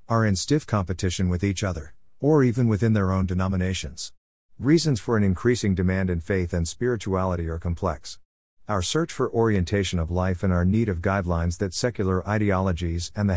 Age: 50-69